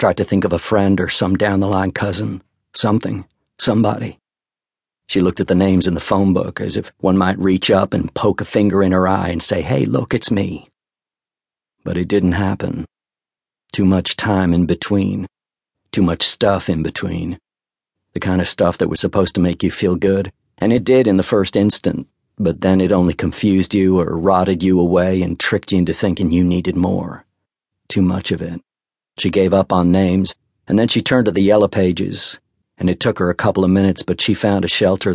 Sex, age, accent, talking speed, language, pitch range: male, 50-69, American, 205 wpm, English, 90-100 Hz